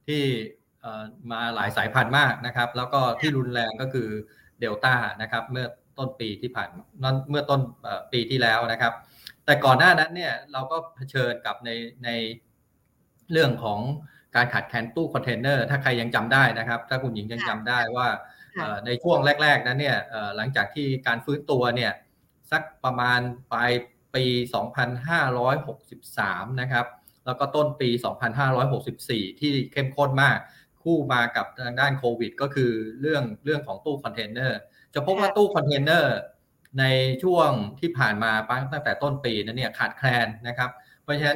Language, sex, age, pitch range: Thai, male, 20-39, 120-140 Hz